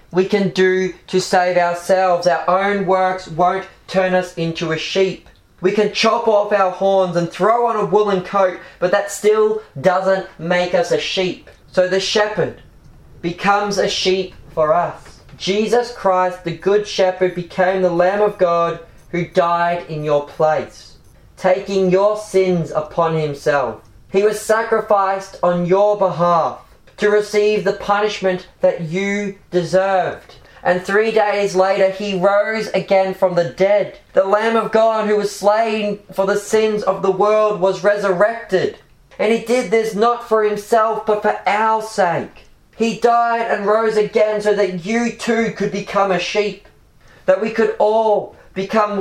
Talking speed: 160 wpm